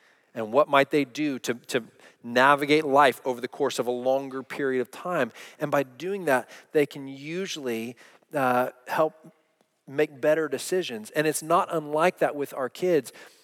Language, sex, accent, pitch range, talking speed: English, male, American, 145-190 Hz, 170 wpm